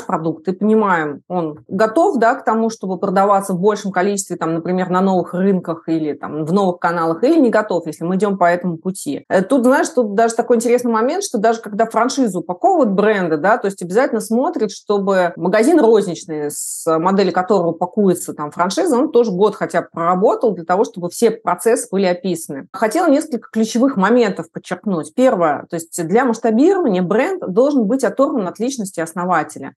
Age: 30-49